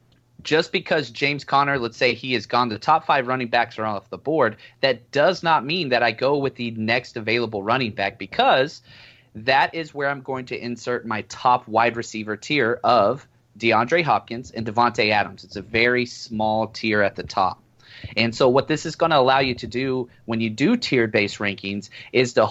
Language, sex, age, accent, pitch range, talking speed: English, male, 30-49, American, 110-135 Hz, 205 wpm